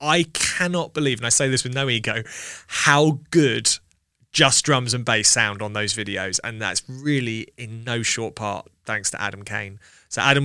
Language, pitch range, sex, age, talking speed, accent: English, 110-140 Hz, male, 20-39, 190 wpm, British